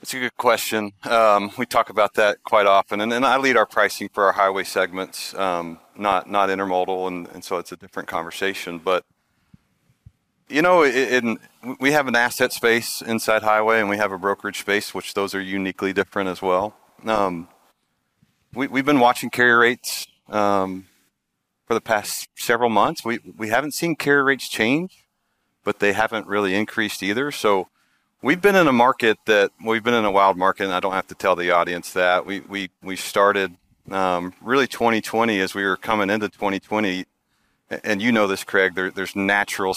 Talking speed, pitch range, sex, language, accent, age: 190 wpm, 95-110 Hz, male, English, American, 40-59